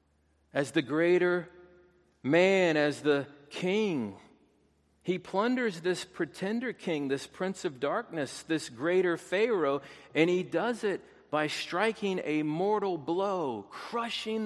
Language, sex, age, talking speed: English, male, 50-69, 120 wpm